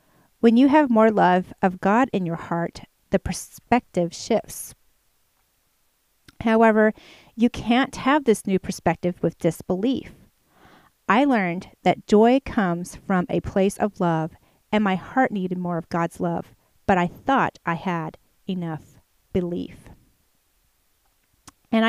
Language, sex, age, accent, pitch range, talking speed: English, female, 30-49, American, 175-225 Hz, 130 wpm